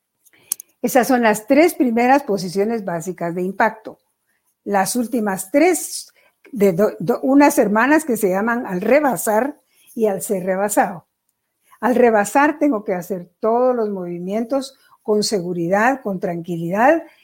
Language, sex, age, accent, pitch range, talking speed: Spanish, female, 50-69, American, 190-240 Hz, 120 wpm